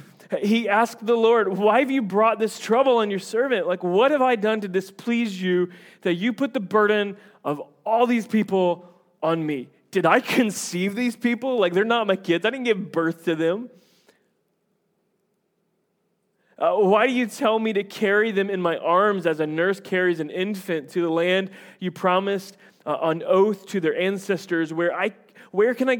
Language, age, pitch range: English, 30-49, 150-205 Hz